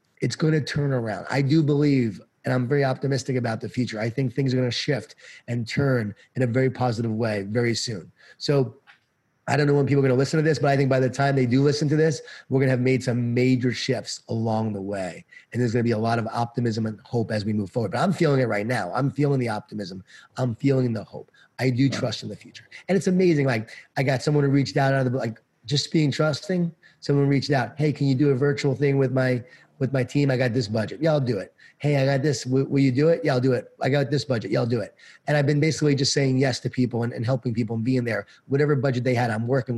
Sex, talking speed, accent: male, 270 wpm, American